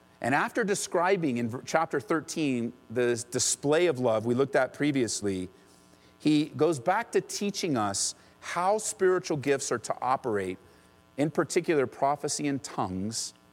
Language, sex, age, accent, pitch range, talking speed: English, male, 40-59, American, 105-170 Hz, 135 wpm